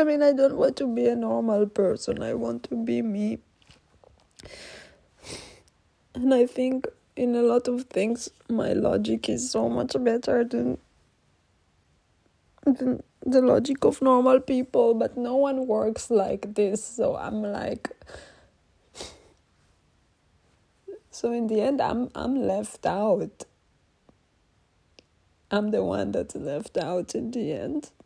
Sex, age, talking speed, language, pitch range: female, 20-39, 130 wpm, English, 200-265 Hz